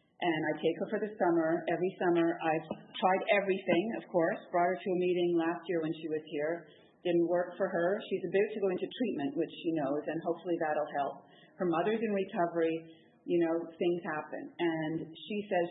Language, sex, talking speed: English, female, 205 wpm